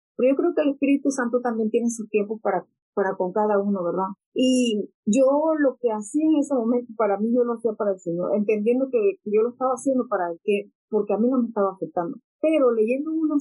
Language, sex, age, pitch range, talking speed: English, female, 40-59, 205-250 Hz, 235 wpm